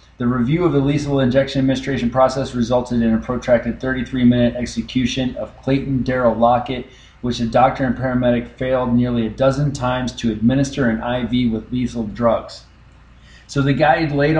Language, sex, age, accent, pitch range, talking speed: English, male, 20-39, American, 115-130 Hz, 165 wpm